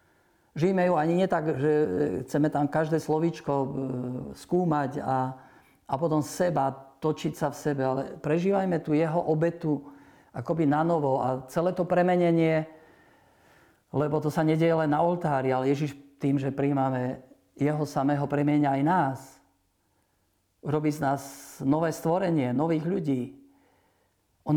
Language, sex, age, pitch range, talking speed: Slovak, male, 50-69, 135-160 Hz, 130 wpm